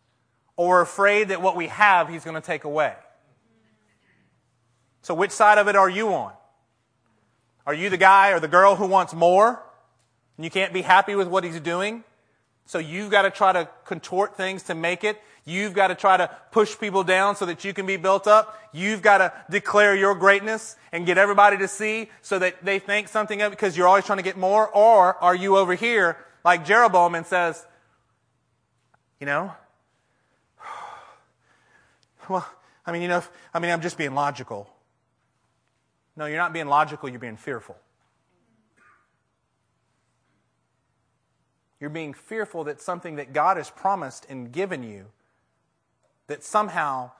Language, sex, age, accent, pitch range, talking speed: English, male, 30-49, American, 135-195 Hz, 170 wpm